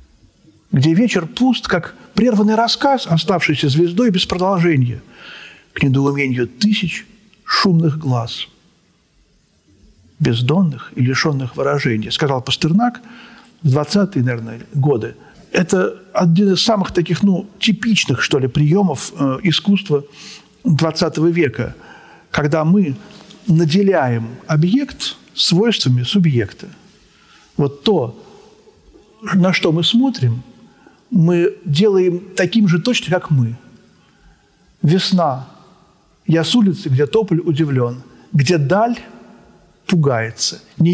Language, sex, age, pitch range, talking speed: Russian, male, 50-69, 140-200 Hz, 100 wpm